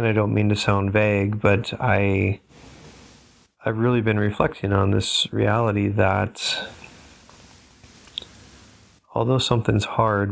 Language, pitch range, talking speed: English, 100-115 Hz, 110 wpm